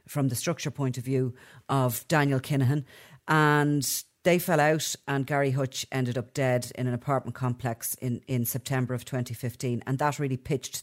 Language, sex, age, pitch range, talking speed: English, female, 40-59, 125-145 Hz, 175 wpm